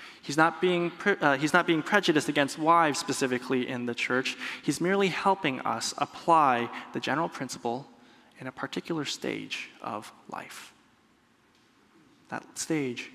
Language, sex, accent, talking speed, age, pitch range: English, male, American, 140 wpm, 20-39, 140-170 Hz